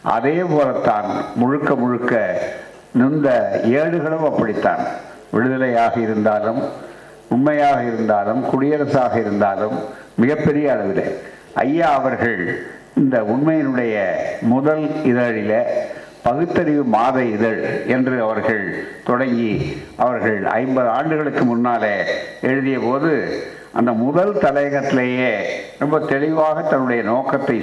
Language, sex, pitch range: Tamil, male, 120-150 Hz